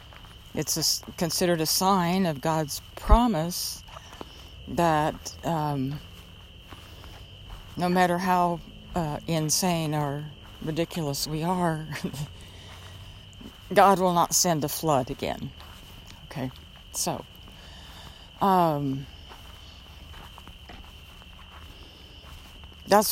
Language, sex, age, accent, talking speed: English, female, 60-79, American, 75 wpm